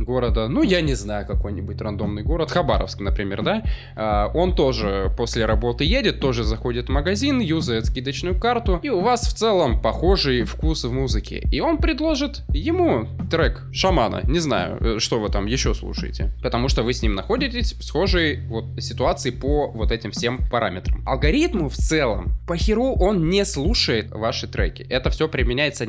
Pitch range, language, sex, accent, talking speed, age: 105-145 Hz, Russian, male, native, 165 wpm, 20-39